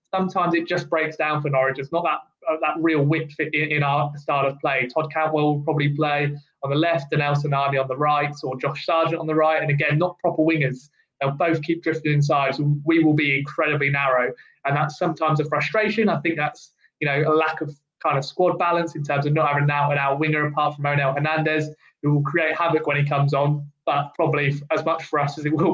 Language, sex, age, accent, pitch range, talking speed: English, male, 20-39, British, 145-160 Hz, 240 wpm